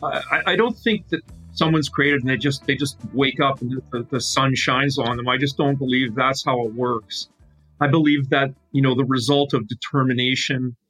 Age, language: 40-59, English